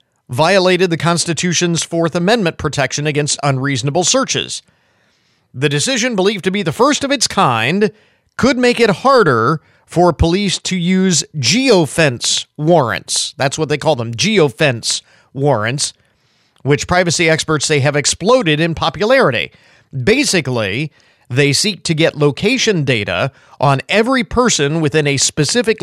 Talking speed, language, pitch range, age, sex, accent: 130 wpm, English, 140-180 Hz, 40-59, male, American